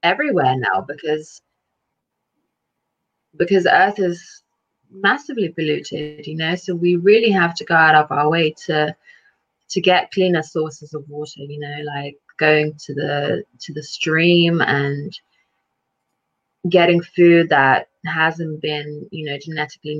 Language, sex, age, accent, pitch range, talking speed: English, female, 20-39, British, 145-175 Hz, 135 wpm